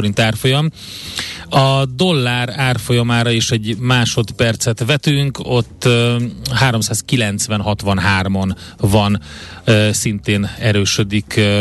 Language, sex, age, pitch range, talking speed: Hungarian, male, 30-49, 105-120 Hz, 65 wpm